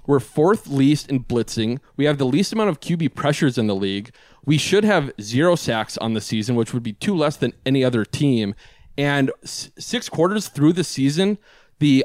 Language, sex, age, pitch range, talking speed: English, male, 20-39, 115-145 Hz, 200 wpm